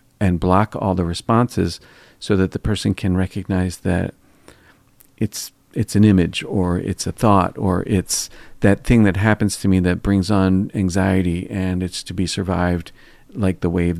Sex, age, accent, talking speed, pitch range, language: male, 50-69, American, 170 wpm, 90-110 Hz, English